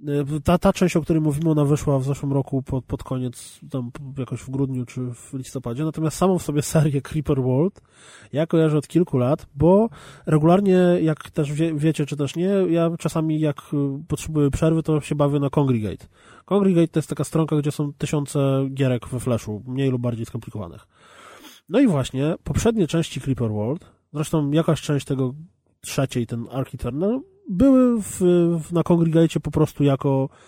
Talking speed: 175 wpm